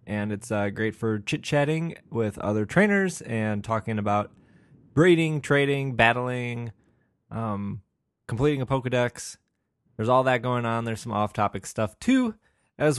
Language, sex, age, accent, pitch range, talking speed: English, male, 20-39, American, 115-140 Hz, 140 wpm